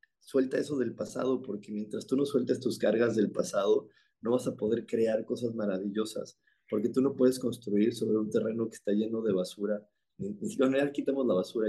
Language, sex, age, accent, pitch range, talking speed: Spanish, male, 30-49, Mexican, 105-125 Hz, 200 wpm